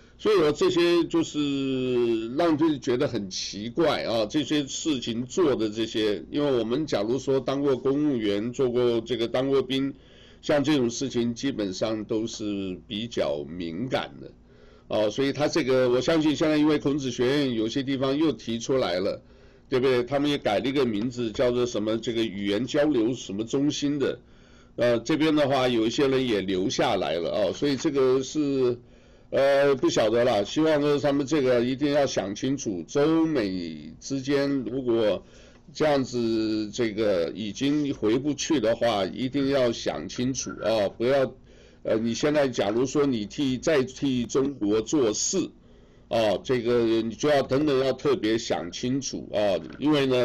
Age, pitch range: 60-79, 115-145 Hz